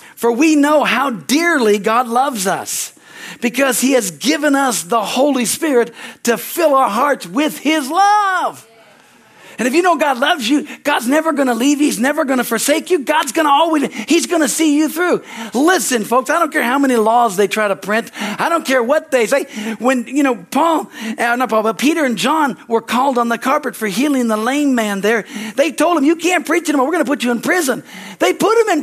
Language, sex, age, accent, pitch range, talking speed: English, male, 50-69, American, 230-300 Hz, 225 wpm